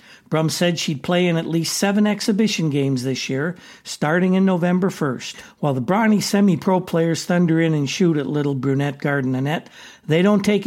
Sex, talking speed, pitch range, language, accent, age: male, 185 wpm, 150-180 Hz, English, American, 60-79